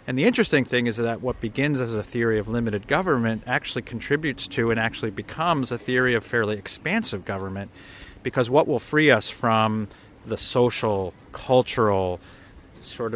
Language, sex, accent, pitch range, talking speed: Swedish, male, American, 100-120 Hz, 165 wpm